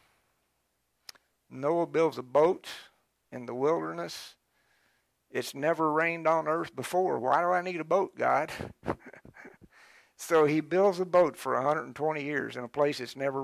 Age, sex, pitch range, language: 60-79, male, 135-215 Hz, English